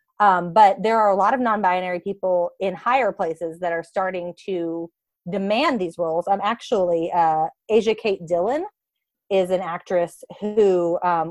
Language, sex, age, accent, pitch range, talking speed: English, female, 30-49, American, 170-210 Hz, 160 wpm